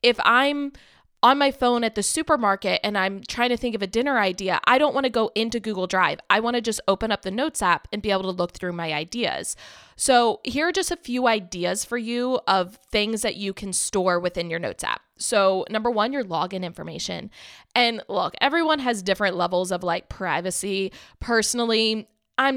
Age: 20-39